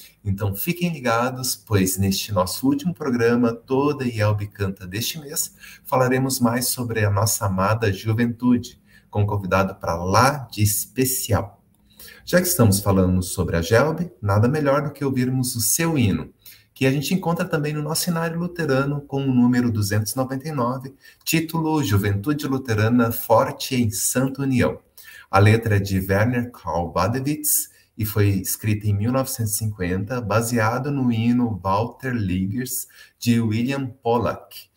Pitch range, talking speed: 100-130 Hz, 145 wpm